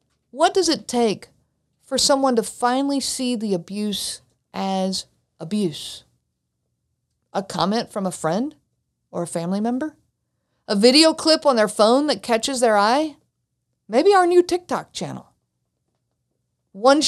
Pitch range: 195-275 Hz